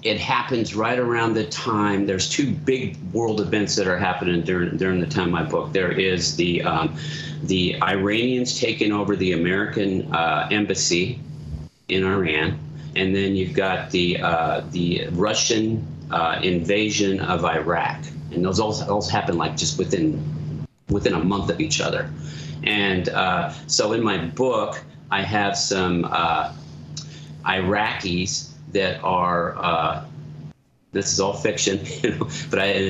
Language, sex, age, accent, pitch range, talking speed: English, male, 40-59, American, 90-115 Hz, 145 wpm